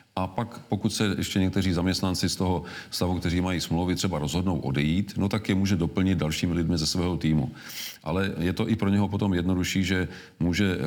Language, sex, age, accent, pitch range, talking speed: Czech, male, 40-59, native, 80-95 Hz, 200 wpm